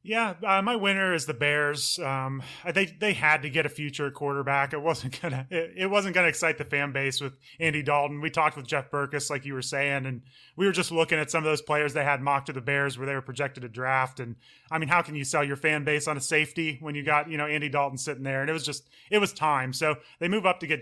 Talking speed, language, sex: 280 wpm, English, male